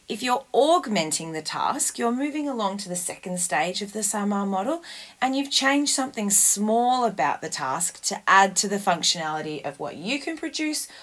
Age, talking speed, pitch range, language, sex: 30-49, 185 wpm, 155-205 Hz, English, female